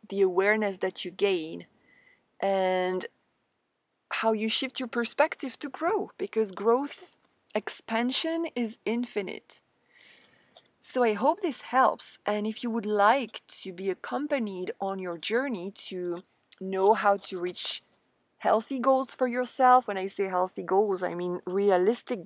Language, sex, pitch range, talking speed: English, female, 190-250 Hz, 135 wpm